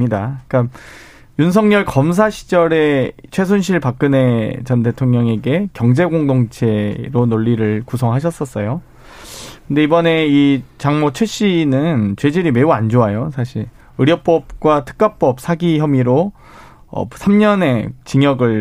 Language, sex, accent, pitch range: Korean, male, native, 125-180 Hz